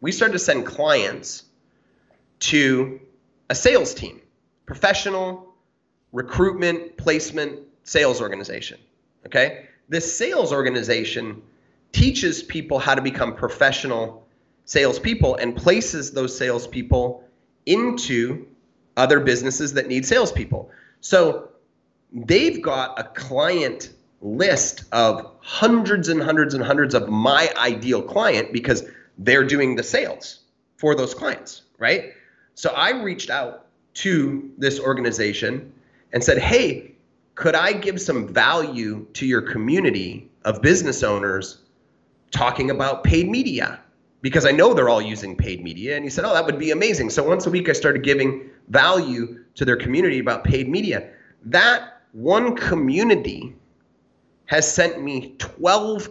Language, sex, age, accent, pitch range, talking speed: English, male, 30-49, American, 125-180 Hz, 130 wpm